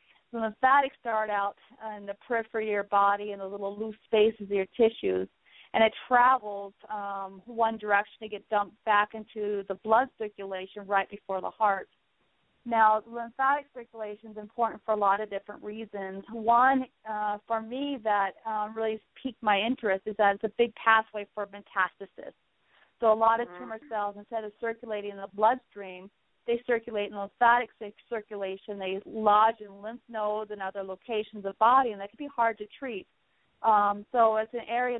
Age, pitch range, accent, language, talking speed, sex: 30-49, 200-225 Hz, American, English, 180 wpm, female